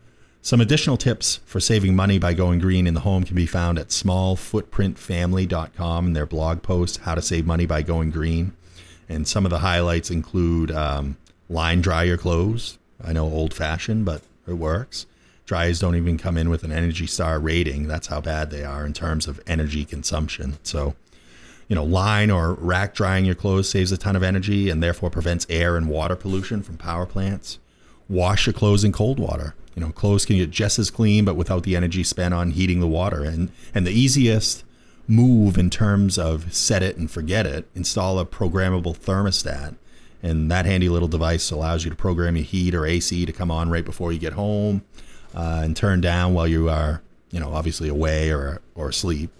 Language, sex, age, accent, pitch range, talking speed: English, male, 30-49, American, 80-95 Hz, 200 wpm